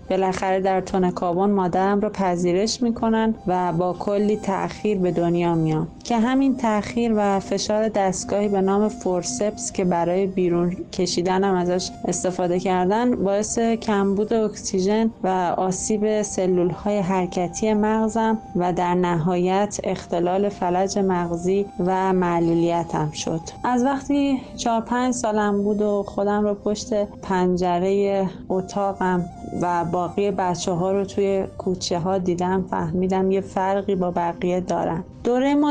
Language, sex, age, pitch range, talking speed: Persian, female, 30-49, 185-220 Hz, 130 wpm